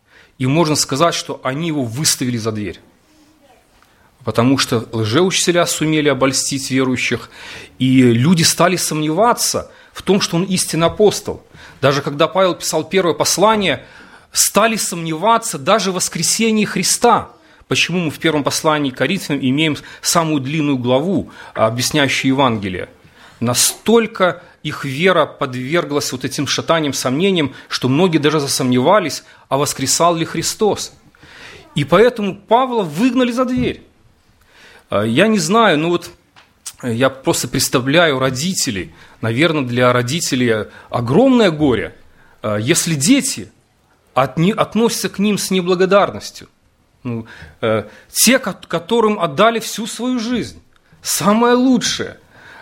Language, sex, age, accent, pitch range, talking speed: Russian, male, 30-49, native, 135-195 Hz, 115 wpm